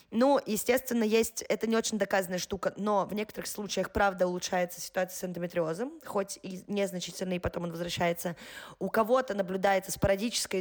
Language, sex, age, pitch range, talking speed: Russian, female, 20-39, 175-220 Hz, 155 wpm